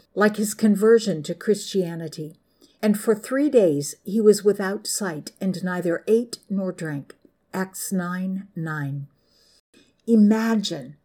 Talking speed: 120 wpm